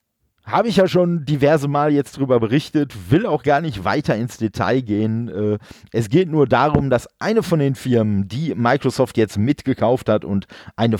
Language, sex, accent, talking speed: German, male, German, 180 wpm